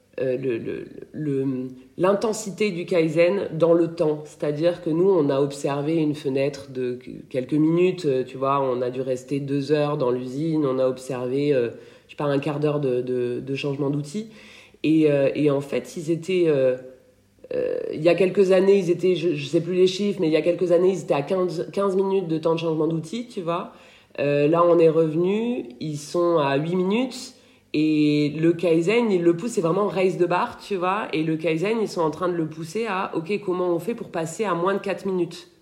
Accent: French